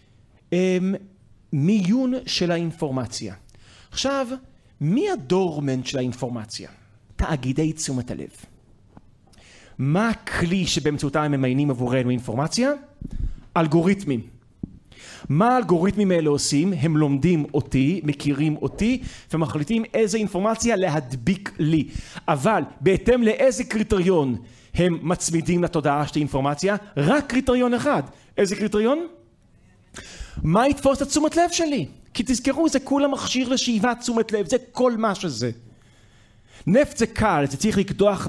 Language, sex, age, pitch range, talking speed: Hebrew, male, 40-59, 135-225 Hz, 110 wpm